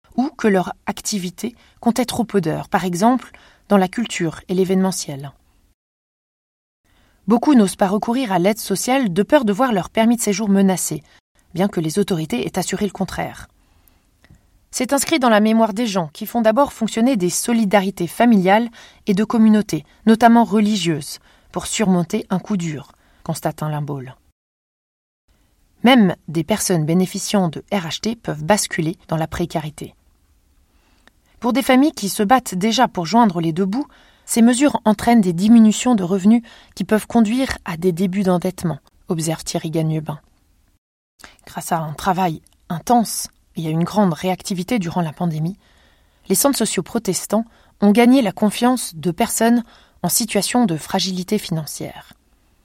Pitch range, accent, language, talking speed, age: 170-230 Hz, French, French, 155 wpm, 20-39